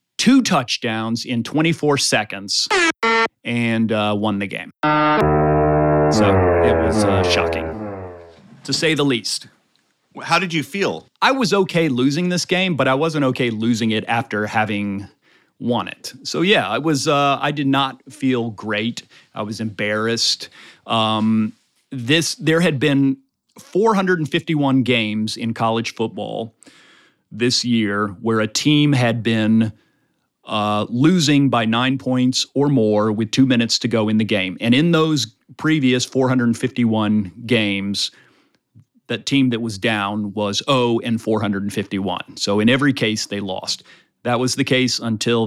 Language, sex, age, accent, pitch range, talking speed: English, male, 30-49, American, 105-140 Hz, 145 wpm